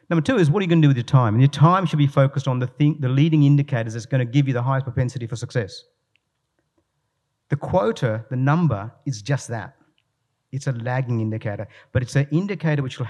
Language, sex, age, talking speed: English, male, 50-69, 235 wpm